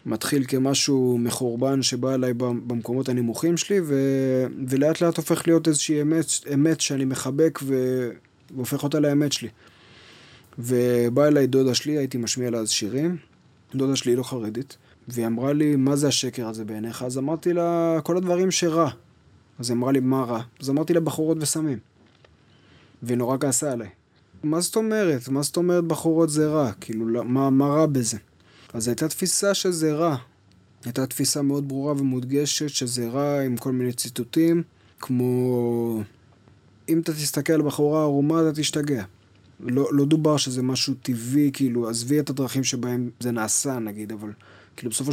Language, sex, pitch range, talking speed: Hebrew, male, 120-150 Hz, 160 wpm